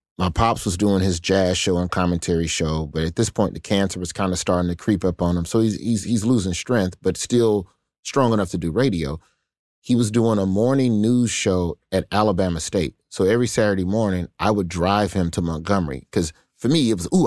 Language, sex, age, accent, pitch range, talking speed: English, male, 30-49, American, 90-115 Hz, 220 wpm